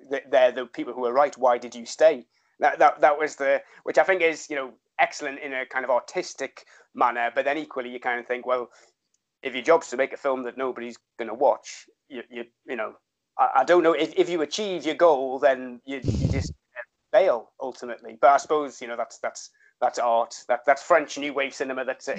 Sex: male